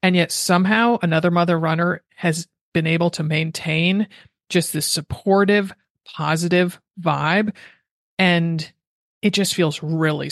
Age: 40-59